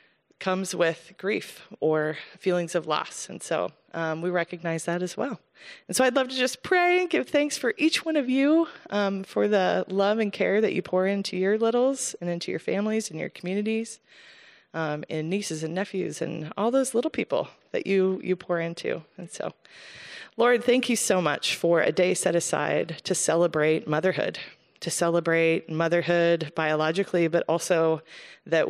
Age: 20-39